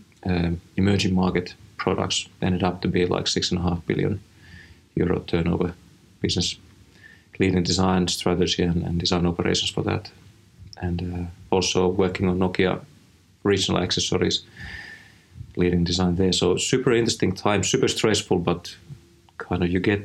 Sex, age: male, 30-49